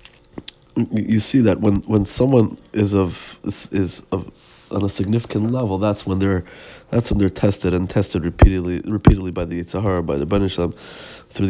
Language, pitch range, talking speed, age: Hebrew, 95-110 Hz, 170 wpm, 30-49